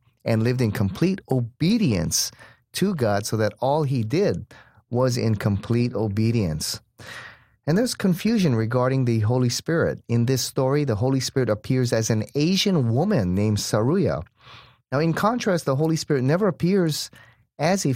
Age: 30-49